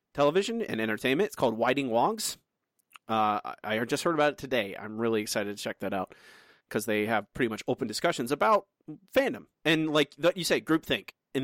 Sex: male